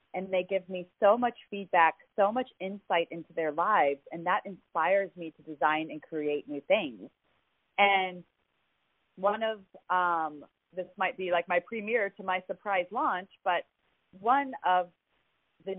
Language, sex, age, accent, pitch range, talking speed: English, female, 30-49, American, 160-205 Hz, 155 wpm